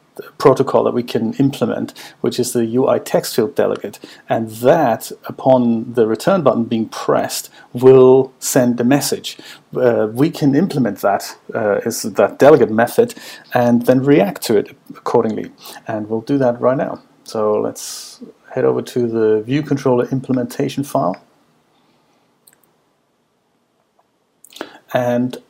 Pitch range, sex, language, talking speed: 115-140 Hz, male, English, 130 wpm